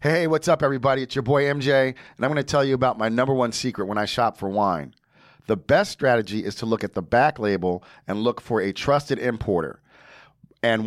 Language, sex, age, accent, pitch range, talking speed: English, male, 40-59, American, 115-140 Hz, 225 wpm